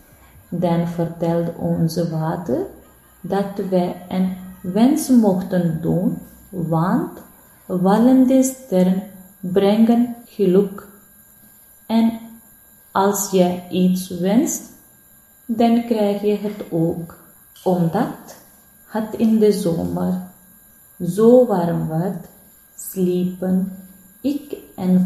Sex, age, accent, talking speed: female, 30-49, Indian, 85 wpm